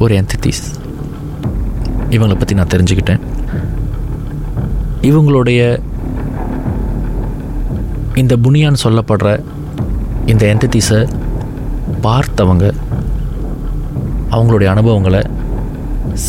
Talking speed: 55 wpm